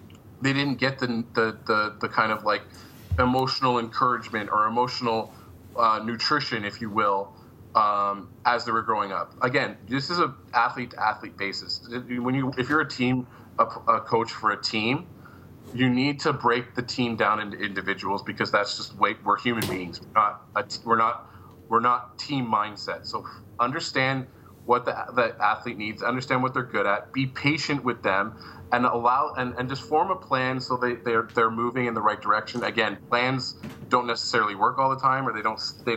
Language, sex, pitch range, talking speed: English, male, 110-130 Hz, 190 wpm